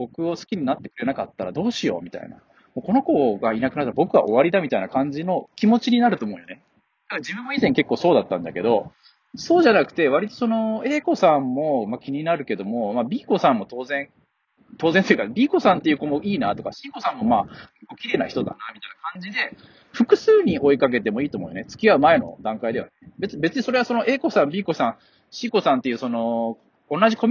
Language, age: Japanese, 20-39